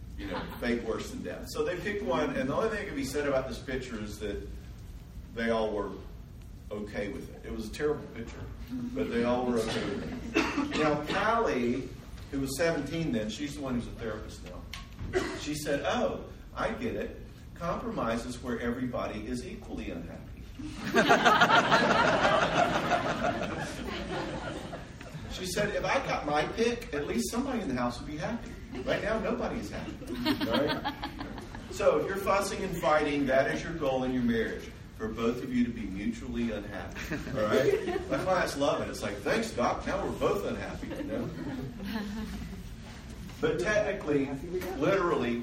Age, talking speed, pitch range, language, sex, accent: 50-69, 160 wpm, 115-165 Hz, English, male, American